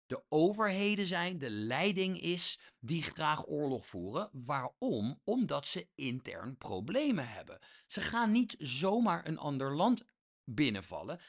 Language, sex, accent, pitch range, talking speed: English, male, Dutch, 115-195 Hz, 130 wpm